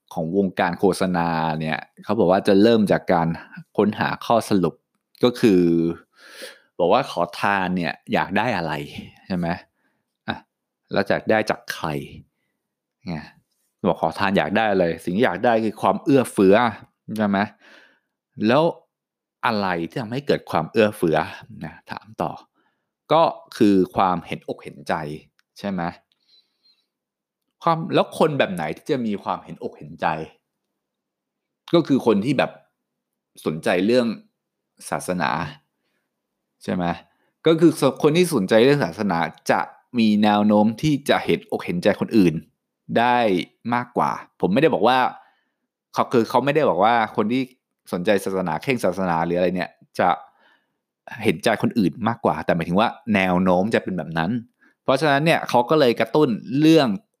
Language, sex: English, male